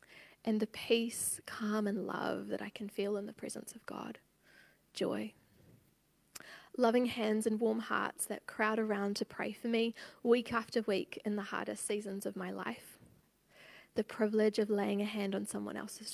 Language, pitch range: English, 195-230 Hz